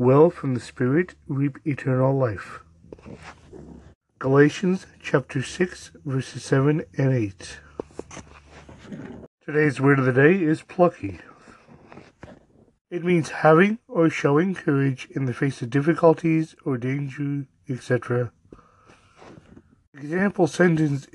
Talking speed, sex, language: 105 wpm, male, English